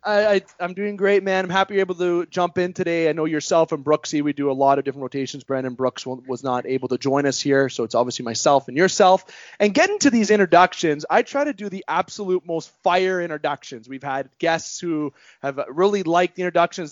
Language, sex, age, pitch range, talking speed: English, male, 20-39, 145-190 Hz, 225 wpm